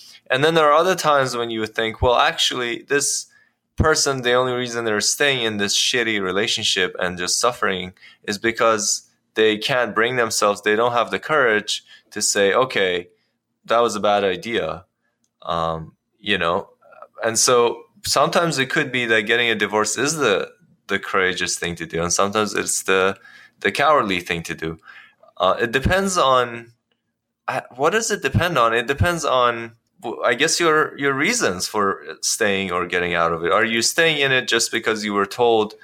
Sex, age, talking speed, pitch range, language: male, 20-39, 185 wpm, 95-120 Hz, English